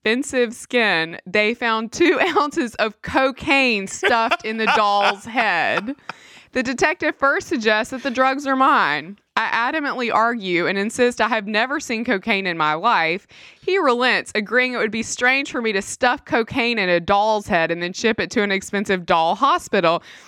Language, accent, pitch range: English, American, 210-275 Hz